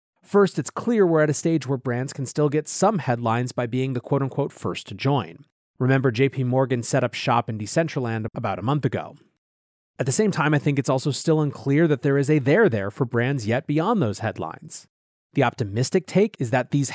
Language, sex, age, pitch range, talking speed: English, male, 30-49, 120-155 Hz, 220 wpm